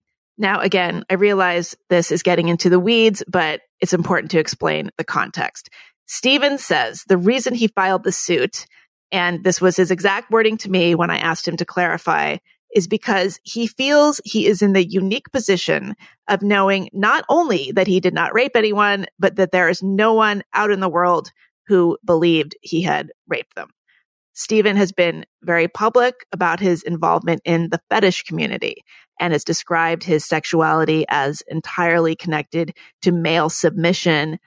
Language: English